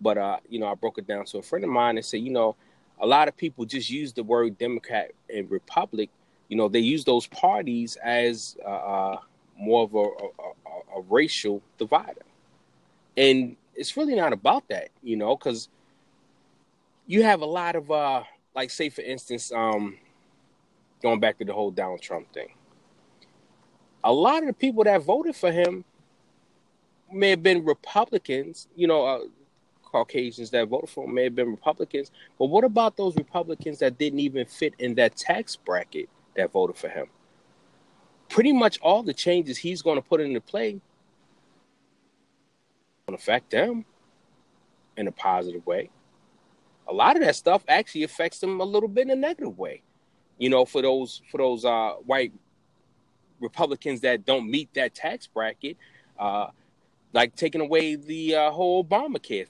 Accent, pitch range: American, 125-205 Hz